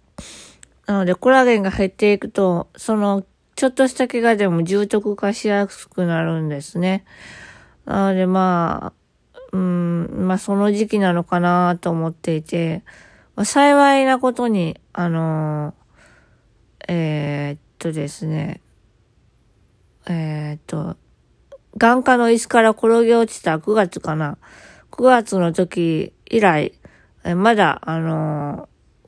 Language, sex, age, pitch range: Japanese, female, 20-39, 175-240 Hz